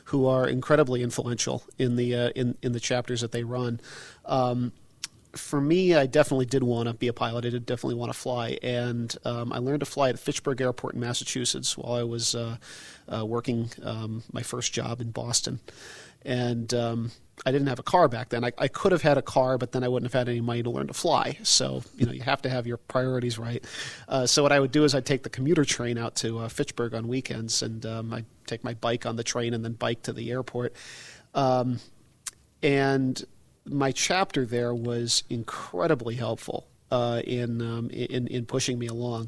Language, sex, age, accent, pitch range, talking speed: English, male, 40-59, American, 120-130 Hz, 215 wpm